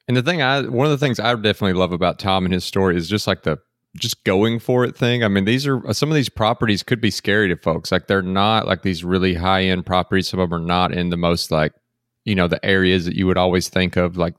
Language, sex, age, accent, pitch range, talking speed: English, male, 30-49, American, 90-110 Hz, 280 wpm